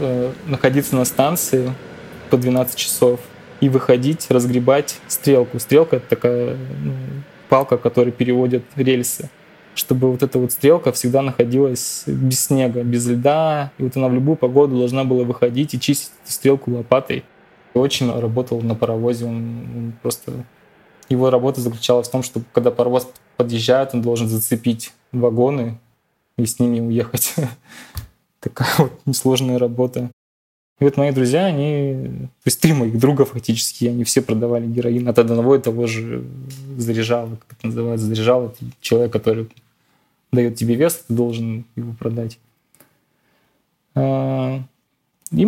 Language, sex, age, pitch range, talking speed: Russian, male, 20-39, 120-135 Hz, 140 wpm